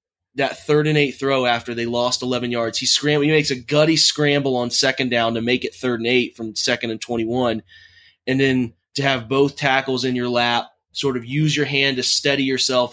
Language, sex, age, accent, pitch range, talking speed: English, male, 20-39, American, 115-135 Hz, 215 wpm